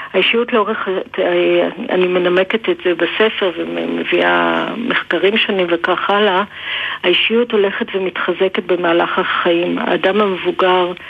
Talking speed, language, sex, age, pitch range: 110 wpm, Hebrew, female, 50-69, 180-195 Hz